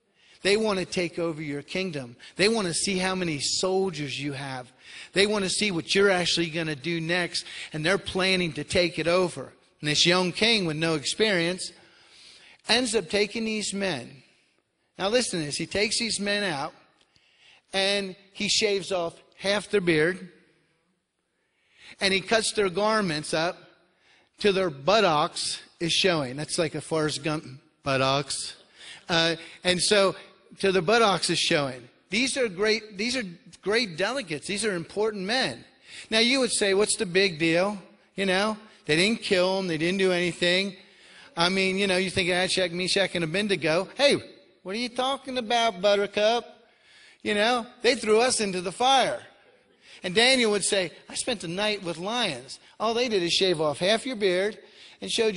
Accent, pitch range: American, 170-210 Hz